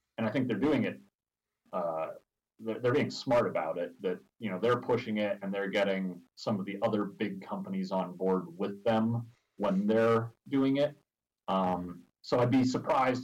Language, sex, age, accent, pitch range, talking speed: English, male, 30-49, American, 90-115 Hz, 180 wpm